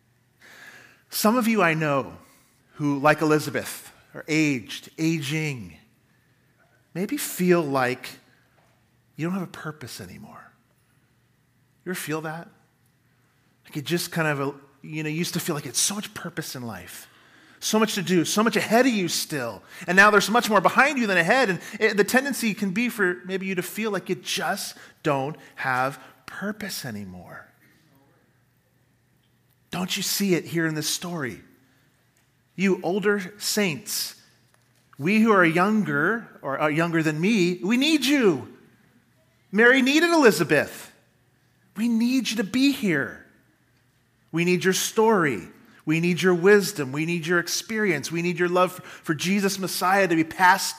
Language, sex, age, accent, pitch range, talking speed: English, male, 40-59, American, 135-200 Hz, 155 wpm